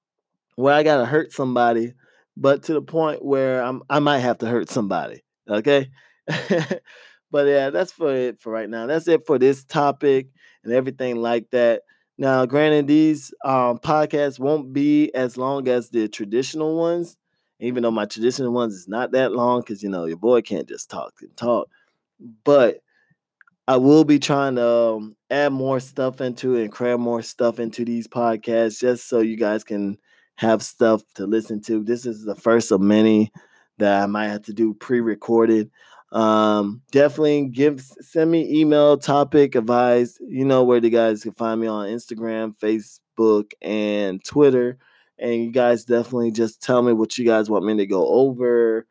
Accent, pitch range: American, 110-140 Hz